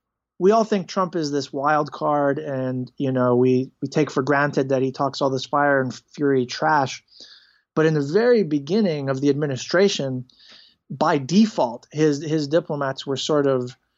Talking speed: 175 wpm